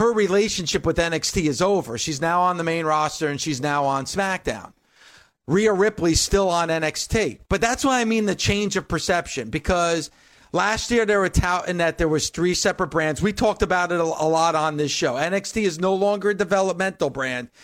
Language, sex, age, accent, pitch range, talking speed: English, male, 40-59, American, 160-200 Hz, 205 wpm